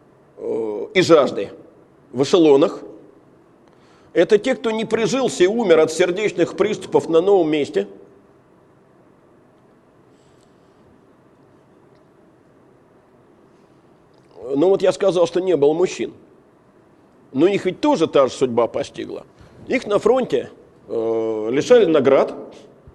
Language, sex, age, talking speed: Russian, male, 50-69, 100 wpm